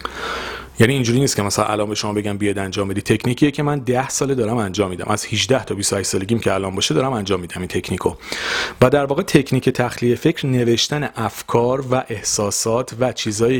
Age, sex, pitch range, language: 30-49, male, 105-140 Hz, Persian